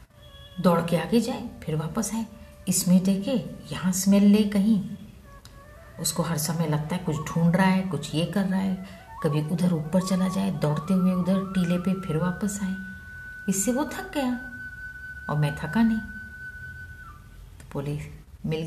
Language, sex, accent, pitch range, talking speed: Hindi, female, native, 160-225 Hz, 165 wpm